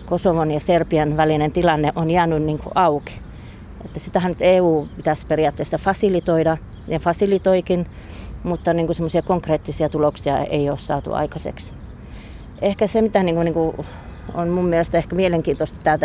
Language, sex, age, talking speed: Finnish, female, 30-49, 140 wpm